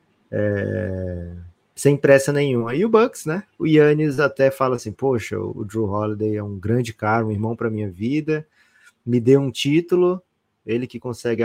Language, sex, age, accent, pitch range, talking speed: Portuguese, male, 20-39, Brazilian, 110-135 Hz, 175 wpm